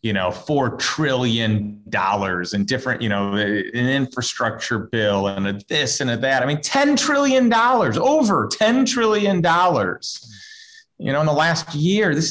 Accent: American